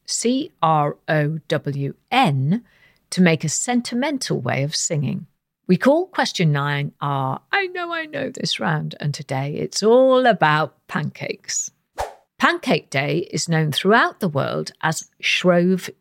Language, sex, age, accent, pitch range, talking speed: English, female, 50-69, British, 150-210 Hz, 125 wpm